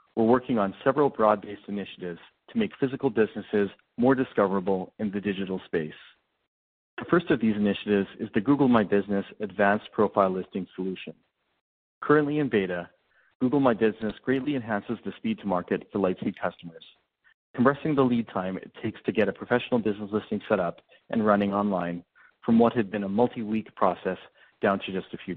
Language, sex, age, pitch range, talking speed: English, male, 40-59, 95-120 Hz, 175 wpm